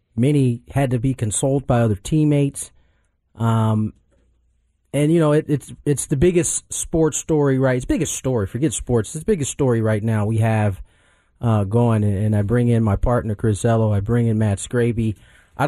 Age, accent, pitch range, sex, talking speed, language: 40-59, American, 110-145 Hz, male, 190 wpm, English